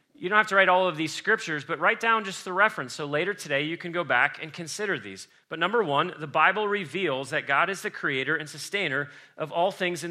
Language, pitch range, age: English, 155-200 Hz, 40-59